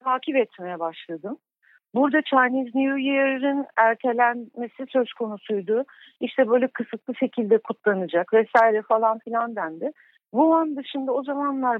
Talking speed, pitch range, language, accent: 115 wpm, 210-260 Hz, Turkish, native